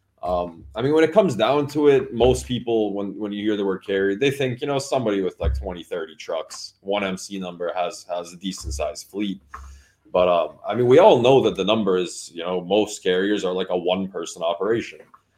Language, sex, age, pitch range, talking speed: English, male, 20-39, 90-115 Hz, 225 wpm